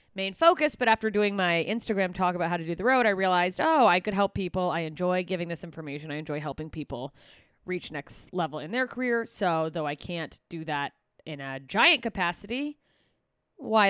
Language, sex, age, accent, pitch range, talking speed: English, female, 20-39, American, 170-235 Hz, 205 wpm